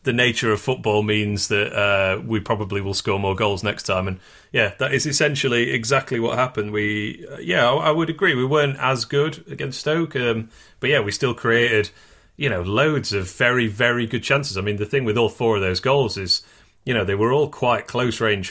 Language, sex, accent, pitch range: English, male, British, 100-140 Hz